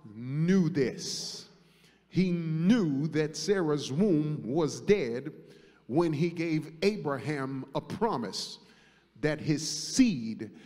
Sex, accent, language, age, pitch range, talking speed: male, American, English, 30-49, 155-205 Hz, 100 wpm